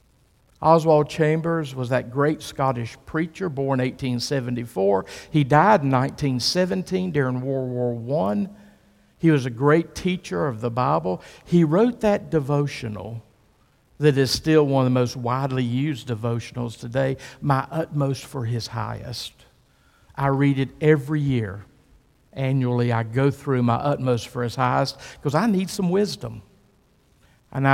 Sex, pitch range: male, 120-150 Hz